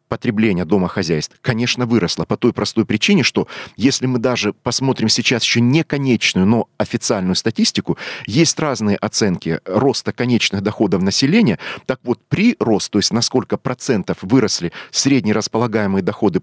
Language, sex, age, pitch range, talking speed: Russian, male, 40-59, 100-130 Hz, 140 wpm